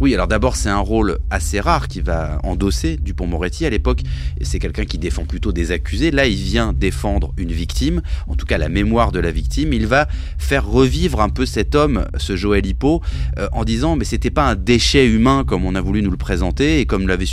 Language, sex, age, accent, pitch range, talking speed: French, male, 30-49, French, 70-100 Hz, 230 wpm